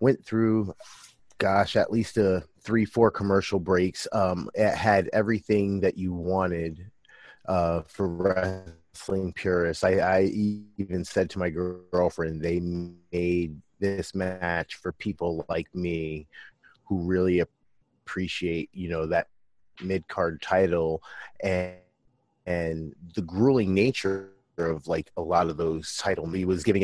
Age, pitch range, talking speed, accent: 30-49, 85-100 Hz, 135 wpm, American